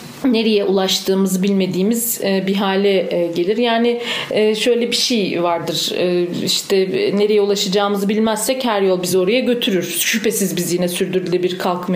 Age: 40-59